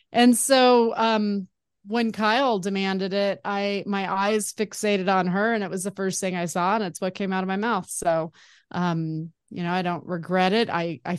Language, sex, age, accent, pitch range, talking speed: English, female, 30-49, American, 180-205 Hz, 210 wpm